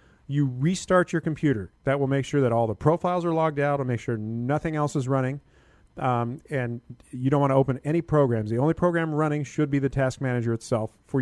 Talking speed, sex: 225 wpm, male